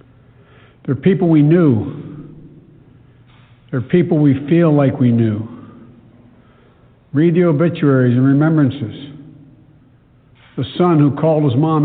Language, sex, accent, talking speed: English, male, American, 120 wpm